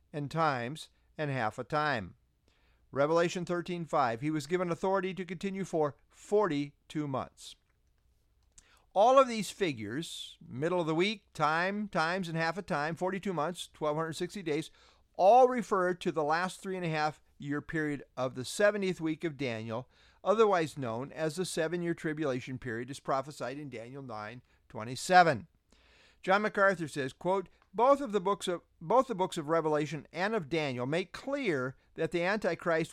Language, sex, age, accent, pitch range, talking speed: English, male, 50-69, American, 140-190 Hz, 155 wpm